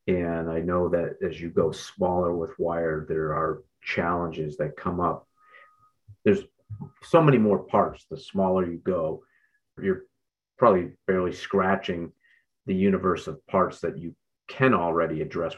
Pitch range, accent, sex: 85-100 Hz, American, male